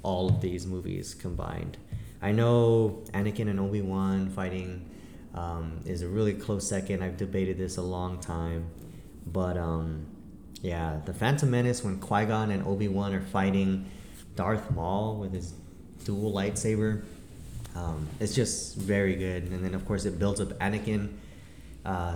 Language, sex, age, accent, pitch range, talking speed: English, male, 20-39, American, 90-110 Hz, 150 wpm